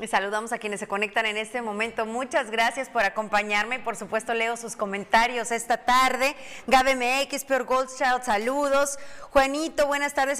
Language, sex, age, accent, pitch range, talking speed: Spanish, female, 30-49, Mexican, 215-270 Hz, 155 wpm